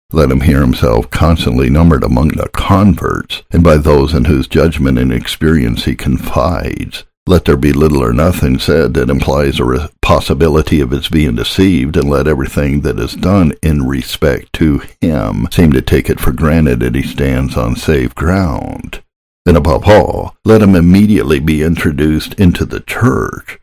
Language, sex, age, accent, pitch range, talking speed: English, male, 60-79, American, 70-85 Hz, 170 wpm